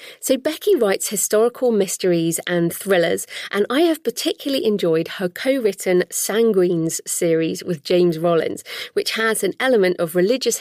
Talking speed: 140 wpm